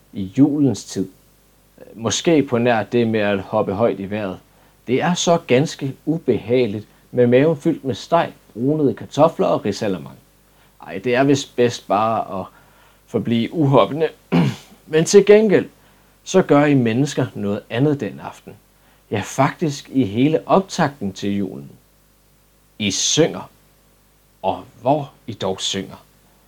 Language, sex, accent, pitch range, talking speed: Danish, male, native, 110-155 Hz, 140 wpm